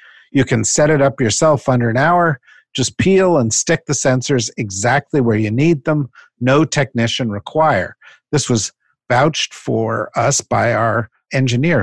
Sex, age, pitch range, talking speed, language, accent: male, 50-69, 115-155 Hz, 155 wpm, English, American